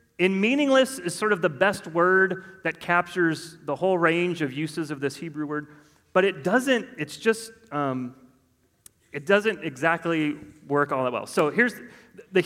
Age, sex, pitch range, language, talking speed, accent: 30-49, male, 140-185 Hz, English, 170 wpm, American